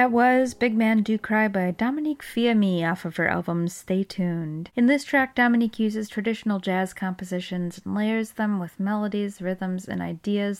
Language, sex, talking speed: English, female, 175 wpm